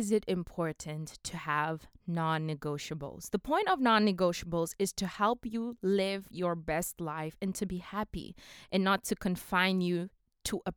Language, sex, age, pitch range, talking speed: English, female, 20-39, 175-230 Hz, 160 wpm